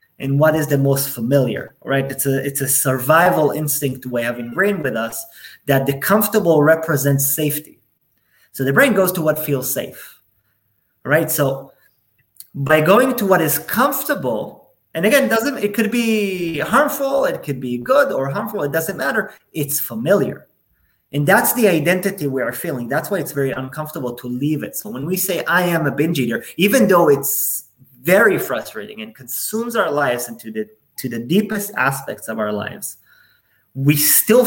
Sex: male